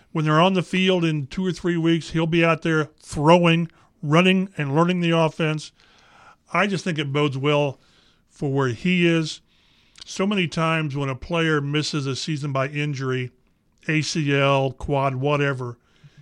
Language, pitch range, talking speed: English, 140-170 Hz, 165 wpm